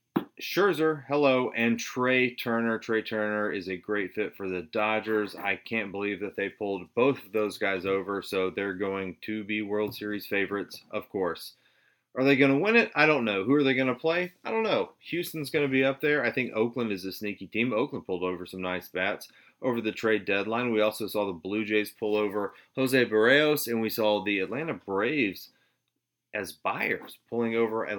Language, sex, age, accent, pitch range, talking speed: English, male, 30-49, American, 100-125 Hz, 210 wpm